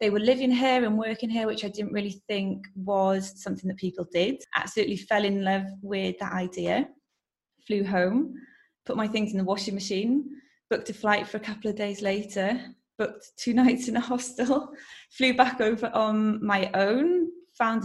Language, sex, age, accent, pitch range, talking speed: English, female, 20-39, British, 200-240 Hz, 185 wpm